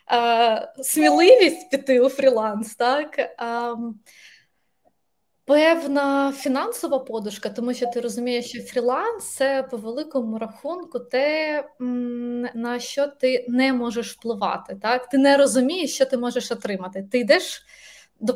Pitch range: 230-275 Hz